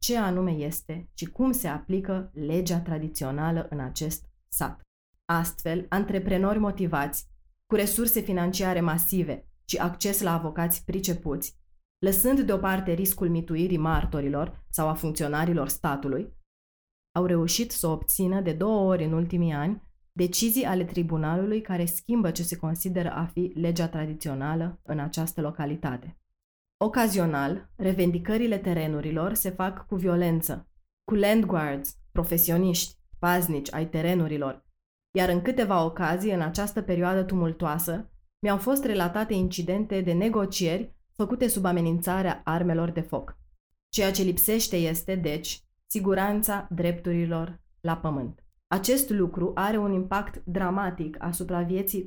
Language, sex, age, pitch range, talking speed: Romanian, female, 30-49, 160-195 Hz, 125 wpm